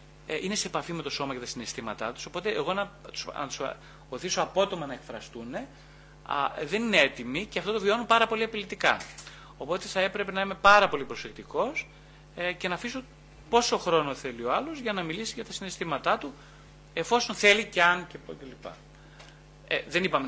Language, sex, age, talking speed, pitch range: Greek, male, 30-49, 195 wpm, 135-195 Hz